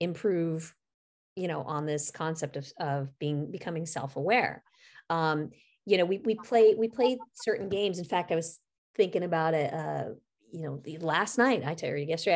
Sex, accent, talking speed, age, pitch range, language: female, American, 180 wpm, 30-49, 160-195 Hz, English